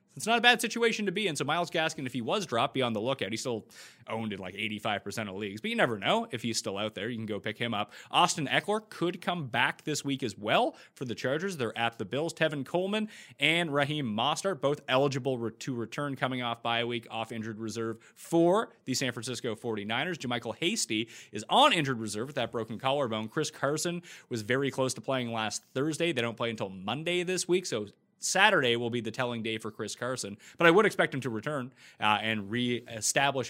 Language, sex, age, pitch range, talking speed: English, male, 30-49, 110-155 Hz, 225 wpm